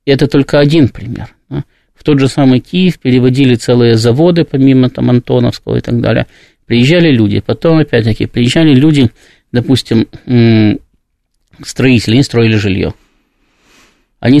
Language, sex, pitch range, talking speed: Russian, male, 120-145 Hz, 125 wpm